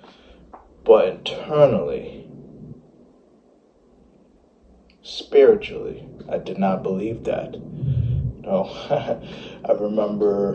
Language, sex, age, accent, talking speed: English, male, 20-39, American, 65 wpm